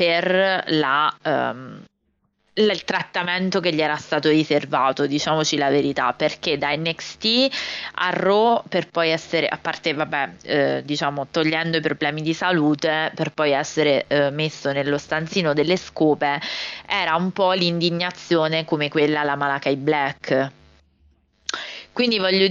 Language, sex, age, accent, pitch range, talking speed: Italian, female, 20-39, native, 145-180 Hz, 140 wpm